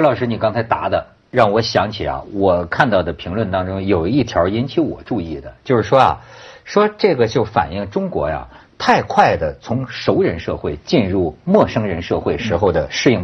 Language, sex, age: Chinese, male, 50-69